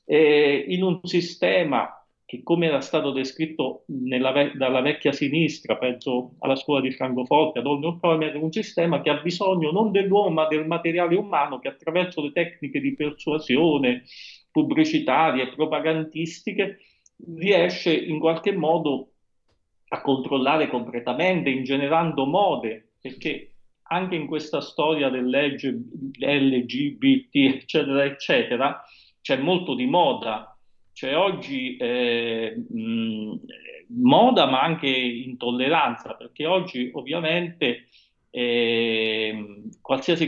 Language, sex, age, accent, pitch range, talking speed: Italian, male, 40-59, native, 125-170 Hz, 115 wpm